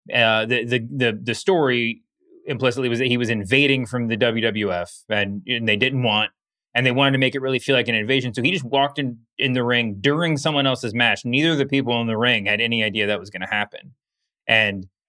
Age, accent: 30-49, American